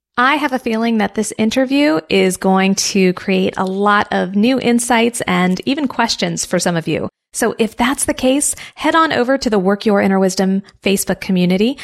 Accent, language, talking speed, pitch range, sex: American, English, 200 wpm, 185-235 Hz, female